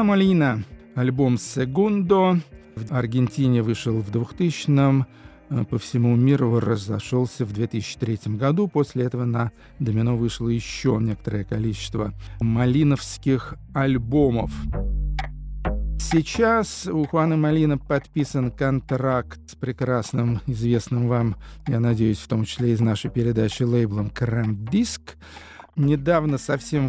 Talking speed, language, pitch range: 105 wpm, Russian, 115-150 Hz